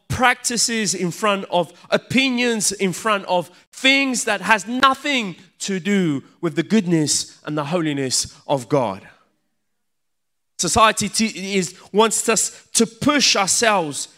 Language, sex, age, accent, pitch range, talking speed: Italian, male, 30-49, British, 190-245 Hz, 125 wpm